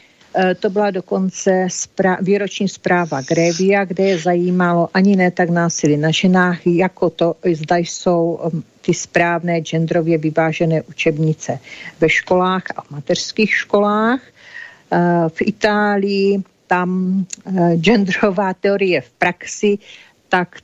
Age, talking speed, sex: 50-69, 110 wpm, female